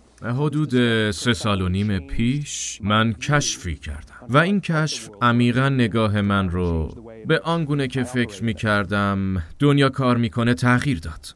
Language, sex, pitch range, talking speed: Persian, male, 100-135 Hz, 155 wpm